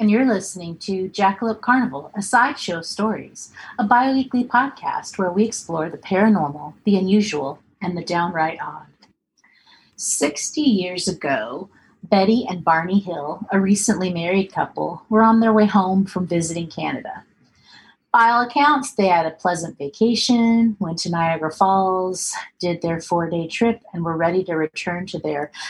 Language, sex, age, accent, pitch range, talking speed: English, female, 30-49, American, 165-230 Hz, 155 wpm